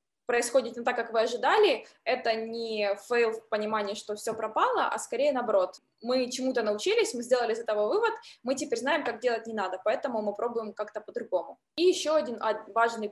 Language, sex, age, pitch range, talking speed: Ukrainian, female, 20-39, 225-300 Hz, 190 wpm